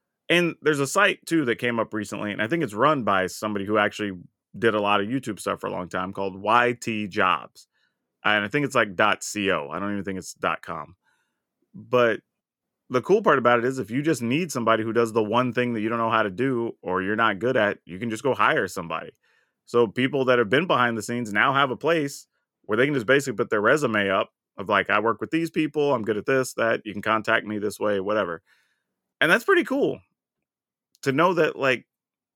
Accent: American